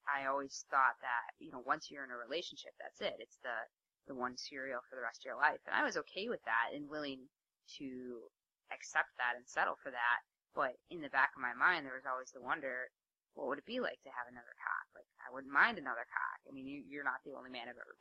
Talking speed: 255 wpm